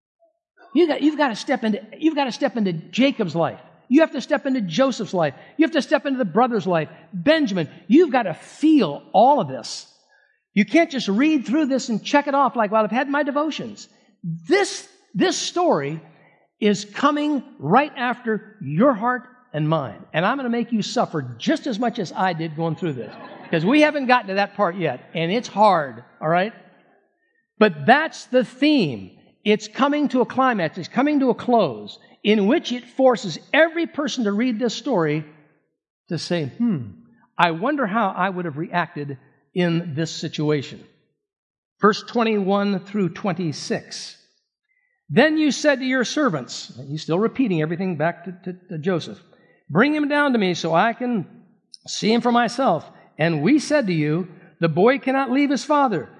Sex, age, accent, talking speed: male, 60-79, American, 175 wpm